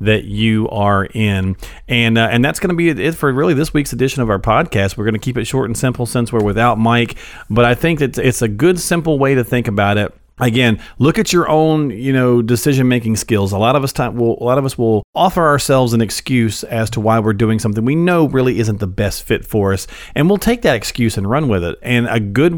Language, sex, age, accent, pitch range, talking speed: English, male, 40-59, American, 110-145 Hz, 255 wpm